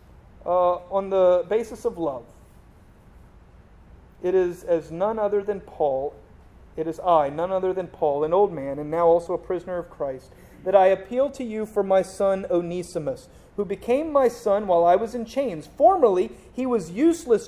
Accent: American